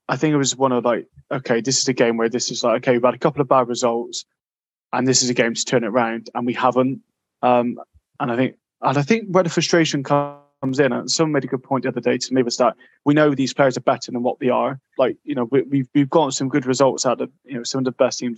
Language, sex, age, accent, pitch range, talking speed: English, male, 20-39, British, 120-140 Hz, 295 wpm